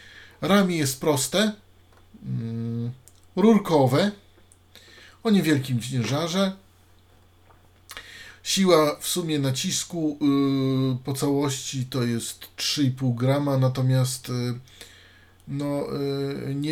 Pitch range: 95-140 Hz